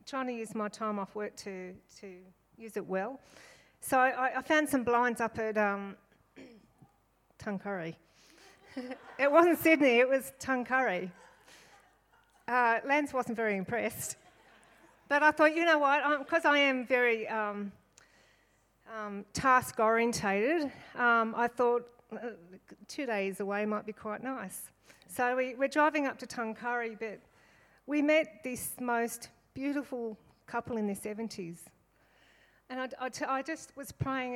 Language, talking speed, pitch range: English, 145 wpm, 210-260 Hz